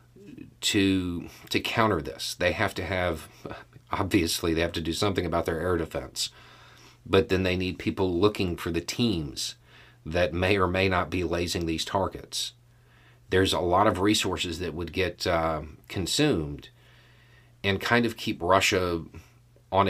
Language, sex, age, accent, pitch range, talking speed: English, male, 40-59, American, 90-120 Hz, 155 wpm